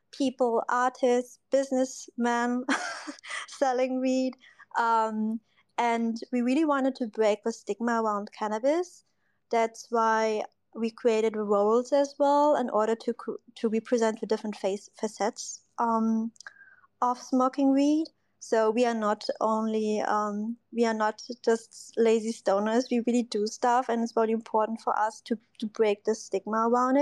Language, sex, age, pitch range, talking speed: English, female, 20-39, 220-250 Hz, 145 wpm